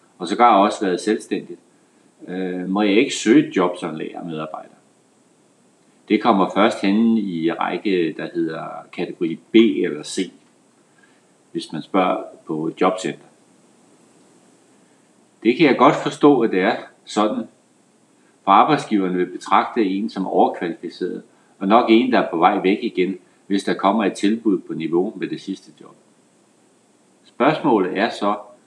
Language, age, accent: Danish, 60-79, native